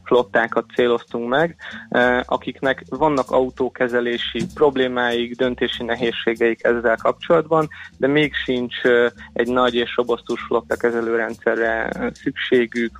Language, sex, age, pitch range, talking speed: Hungarian, male, 20-39, 120-135 Hz, 95 wpm